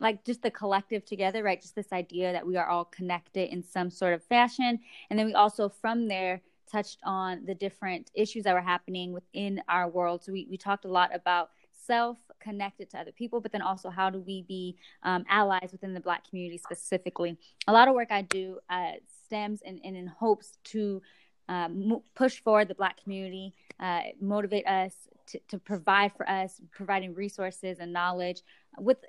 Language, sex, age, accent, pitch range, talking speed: English, female, 20-39, American, 180-210 Hz, 190 wpm